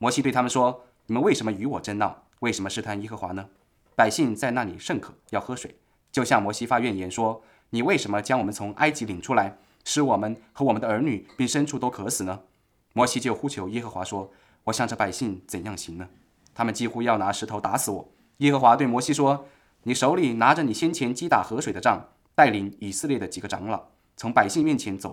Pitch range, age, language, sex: 100-130 Hz, 20-39, English, male